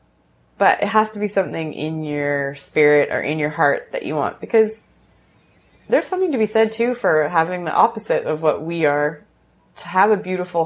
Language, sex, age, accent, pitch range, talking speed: English, female, 20-39, American, 155-200 Hz, 195 wpm